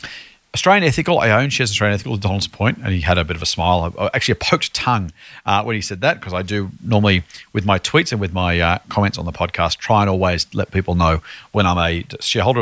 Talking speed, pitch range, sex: 240 wpm, 100-130 Hz, male